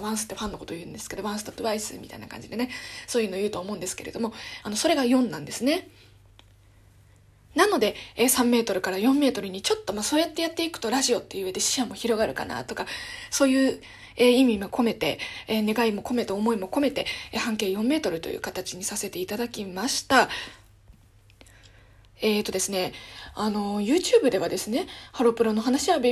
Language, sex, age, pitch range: Japanese, female, 20-39, 200-255 Hz